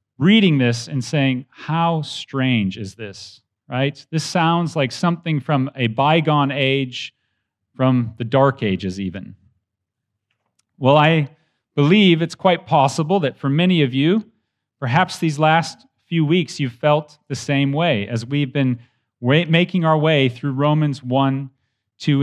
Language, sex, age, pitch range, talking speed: English, male, 40-59, 115-165 Hz, 145 wpm